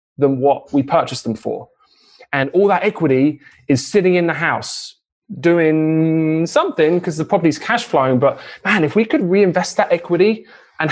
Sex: male